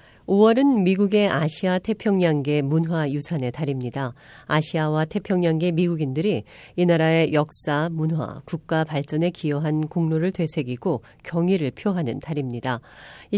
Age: 40-59